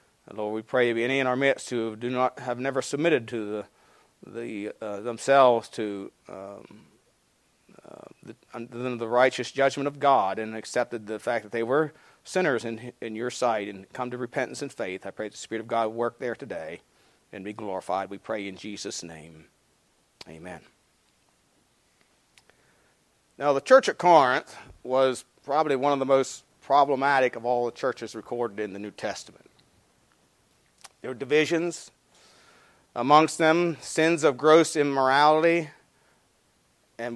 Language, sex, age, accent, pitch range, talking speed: English, male, 40-59, American, 115-145 Hz, 160 wpm